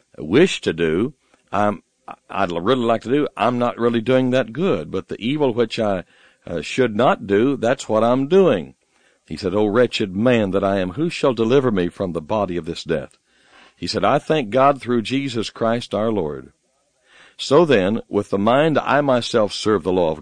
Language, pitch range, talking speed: English, 105-140 Hz, 200 wpm